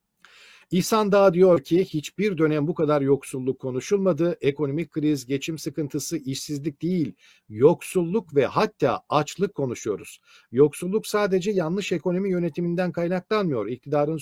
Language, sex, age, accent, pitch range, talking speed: Turkish, male, 50-69, native, 145-185 Hz, 120 wpm